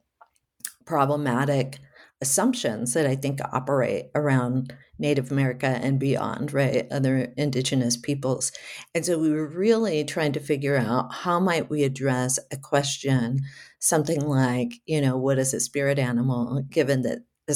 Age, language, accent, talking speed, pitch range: 50-69, English, American, 145 wpm, 135-160 Hz